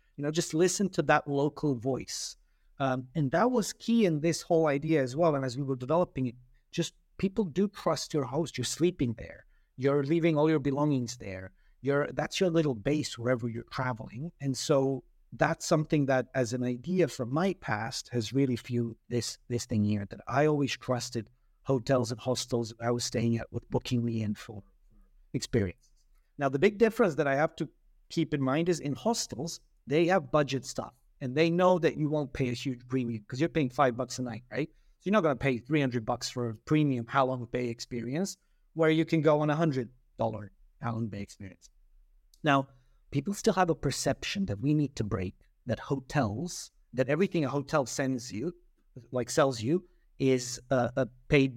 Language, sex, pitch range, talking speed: English, male, 120-155 Hz, 200 wpm